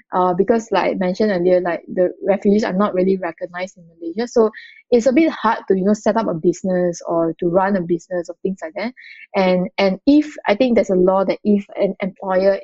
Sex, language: female, English